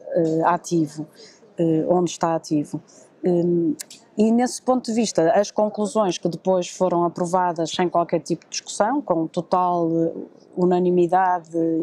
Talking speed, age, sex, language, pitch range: 115 wpm, 20-39, female, Portuguese, 170-200 Hz